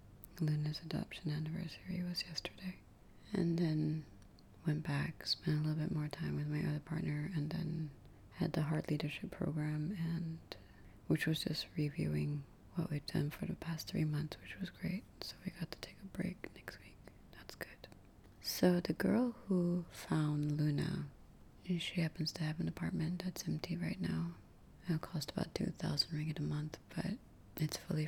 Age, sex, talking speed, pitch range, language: 30-49, female, 170 wpm, 150-175 Hz, English